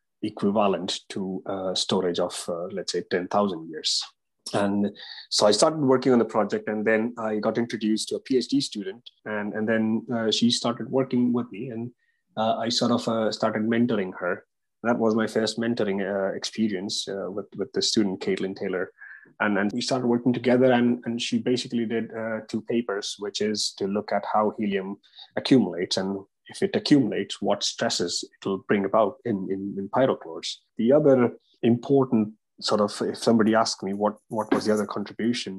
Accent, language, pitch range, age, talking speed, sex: Indian, English, 100-120 Hz, 30-49, 185 wpm, male